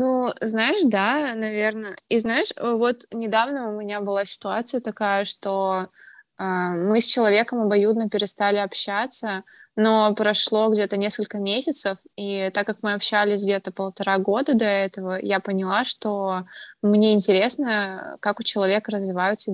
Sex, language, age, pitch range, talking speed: female, Russian, 20-39, 195-230 Hz, 140 wpm